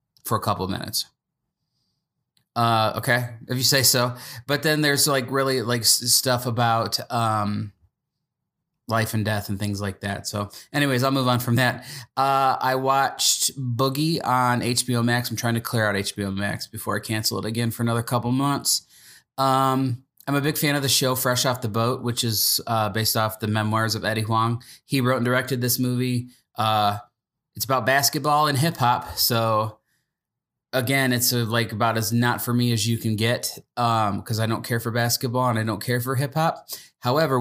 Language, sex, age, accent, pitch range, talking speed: English, male, 20-39, American, 110-130 Hz, 190 wpm